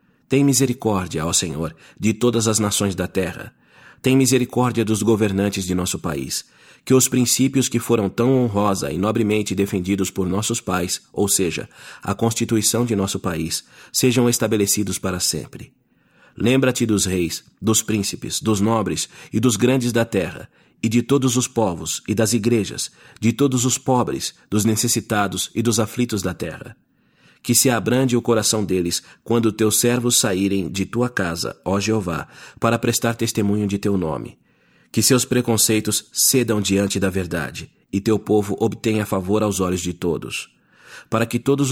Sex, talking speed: male, 160 wpm